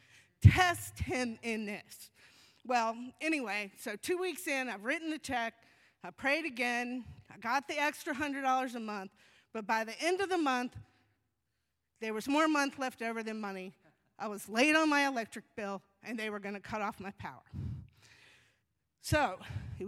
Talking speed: 170 wpm